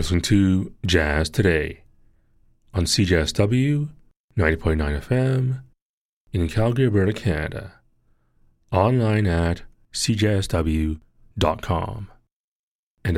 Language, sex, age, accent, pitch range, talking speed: English, male, 30-49, American, 80-115 Hz, 75 wpm